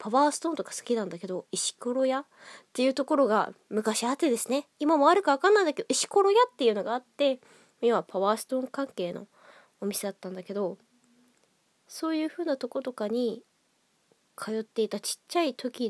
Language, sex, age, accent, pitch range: Japanese, female, 20-39, native, 205-295 Hz